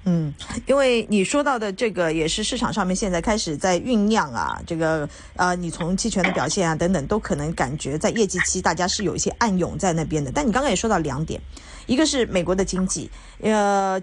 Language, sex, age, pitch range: Chinese, female, 30-49, 180-245 Hz